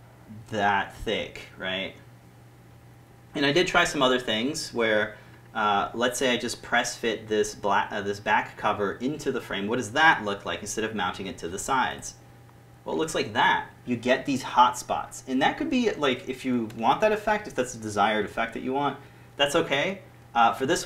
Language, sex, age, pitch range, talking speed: English, male, 30-49, 100-135 Hz, 205 wpm